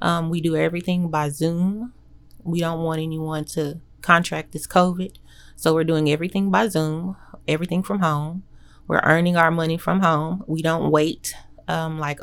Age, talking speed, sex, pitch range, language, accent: 30-49, 165 wpm, female, 155-185 Hz, English, American